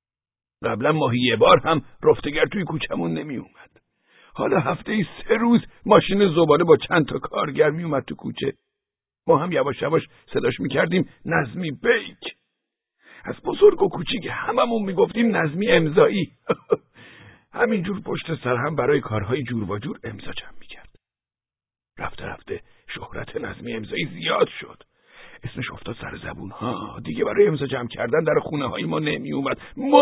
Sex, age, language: male, 60-79, Persian